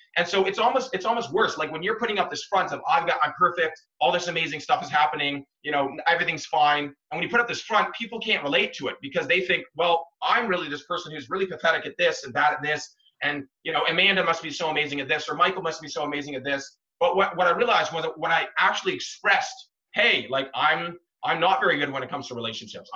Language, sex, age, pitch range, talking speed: English, male, 30-49, 145-210 Hz, 260 wpm